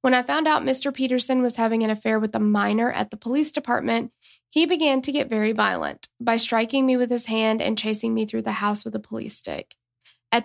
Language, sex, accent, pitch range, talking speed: English, female, American, 210-245 Hz, 230 wpm